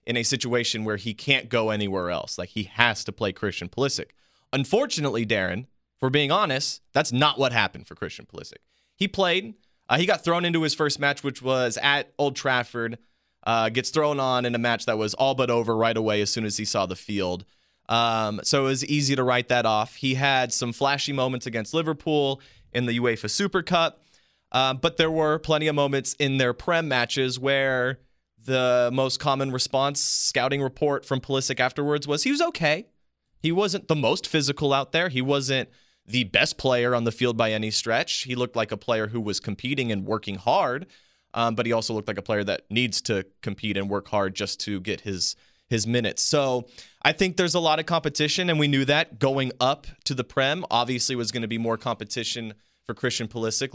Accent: American